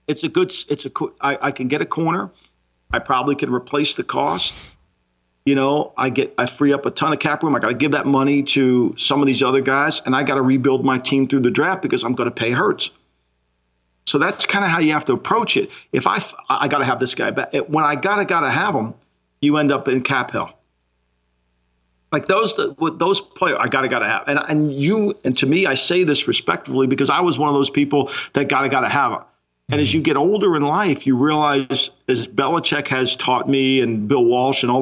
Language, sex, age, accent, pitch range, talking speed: English, male, 50-69, American, 125-145 Hz, 250 wpm